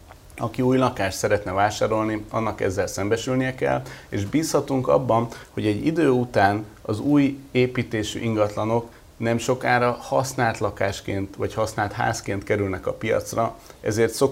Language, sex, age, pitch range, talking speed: Hungarian, male, 30-49, 95-125 Hz, 130 wpm